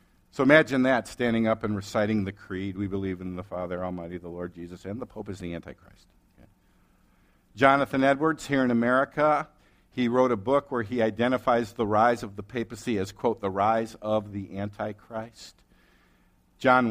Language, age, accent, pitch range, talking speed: English, 50-69, American, 95-125 Hz, 175 wpm